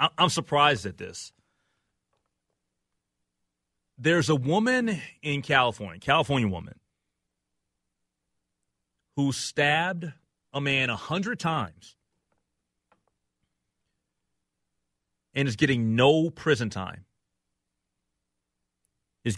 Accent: American